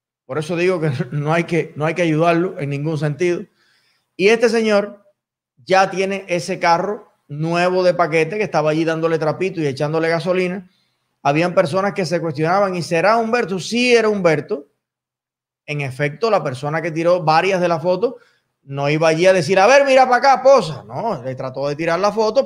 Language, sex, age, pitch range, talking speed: Spanish, male, 20-39, 155-210 Hz, 190 wpm